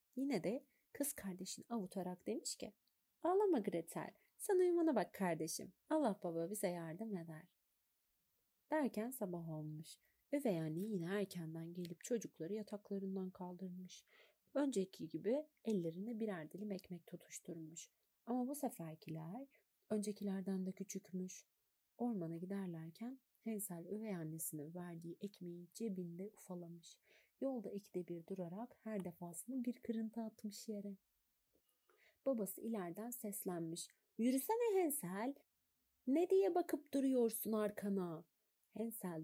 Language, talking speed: Turkish, 110 wpm